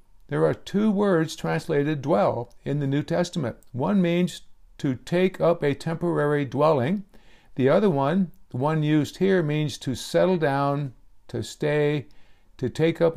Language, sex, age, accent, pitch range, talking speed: English, male, 60-79, American, 140-185 Hz, 155 wpm